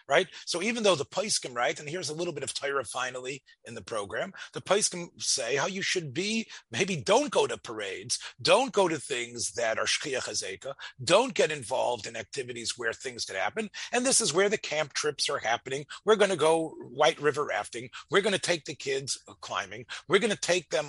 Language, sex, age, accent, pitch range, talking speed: English, male, 30-49, American, 150-220 Hz, 220 wpm